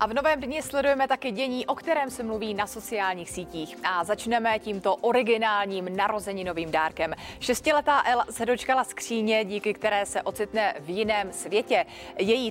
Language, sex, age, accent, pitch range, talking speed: Czech, female, 30-49, native, 185-245 Hz, 160 wpm